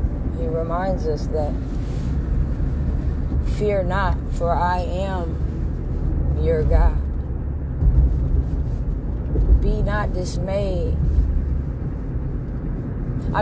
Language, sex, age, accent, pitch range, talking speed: English, female, 20-39, American, 65-75 Hz, 65 wpm